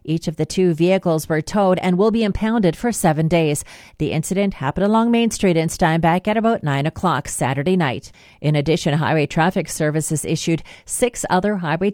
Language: English